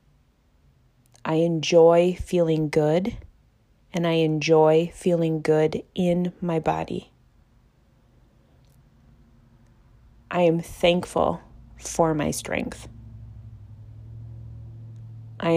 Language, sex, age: English, female, 20-39